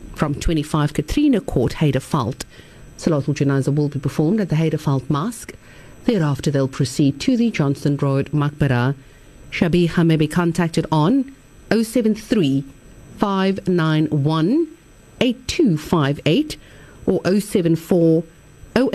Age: 50-69